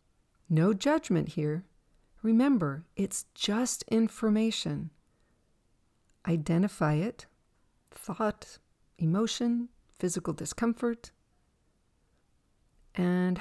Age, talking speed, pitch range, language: 40-59, 65 wpm, 150-215 Hz, English